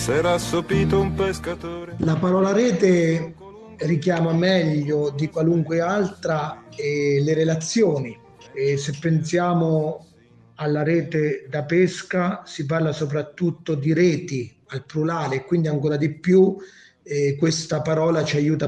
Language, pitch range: Italian, 145-170 Hz